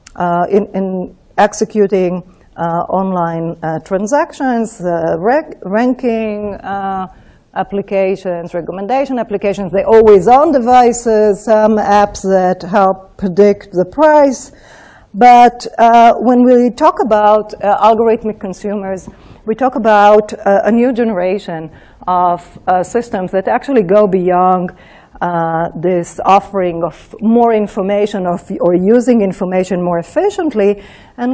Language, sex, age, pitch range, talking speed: English, female, 50-69, 180-225 Hz, 120 wpm